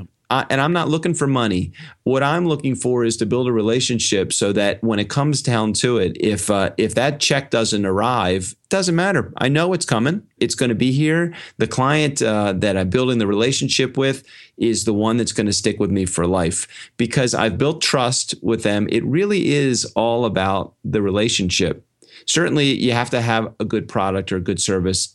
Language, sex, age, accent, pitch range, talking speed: English, male, 40-59, American, 100-125 Hz, 210 wpm